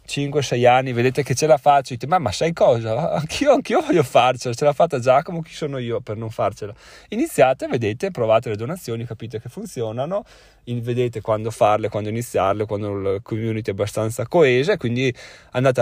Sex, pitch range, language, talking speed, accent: male, 120-170 Hz, Italian, 175 wpm, native